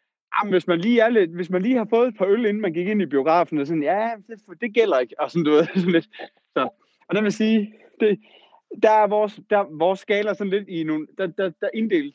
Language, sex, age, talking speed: Danish, male, 30-49, 260 wpm